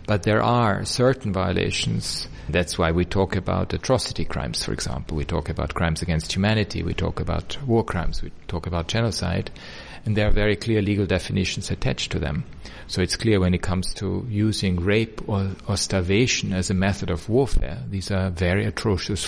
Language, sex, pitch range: English, male, 90-105 Hz